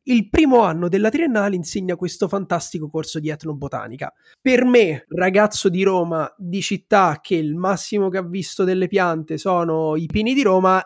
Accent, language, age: native, Italian, 30-49